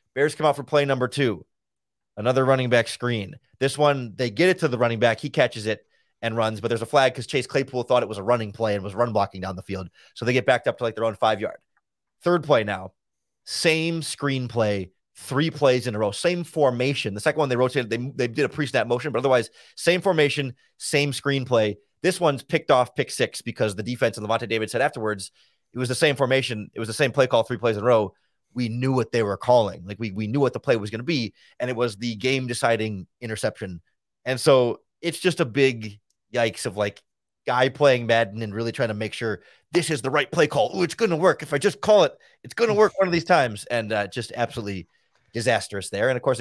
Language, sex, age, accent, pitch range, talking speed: English, male, 30-49, American, 110-140 Hz, 250 wpm